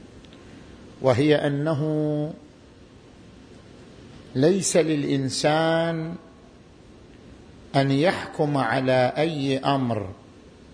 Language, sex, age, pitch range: Arabic, male, 50-69, 135-170 Hz